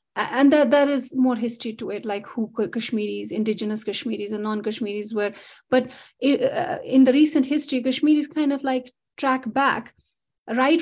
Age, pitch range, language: 30-49, 225-275 Hz, English